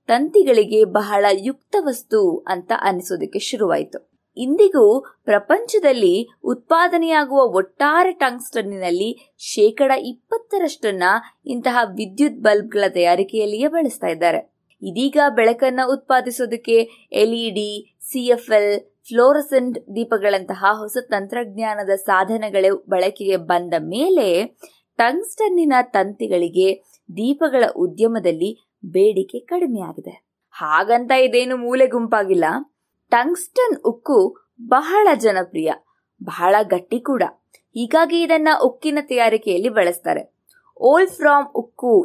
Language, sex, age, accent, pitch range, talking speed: Kannada, female, 20-39, native, 210-300 Hz, 85 wpm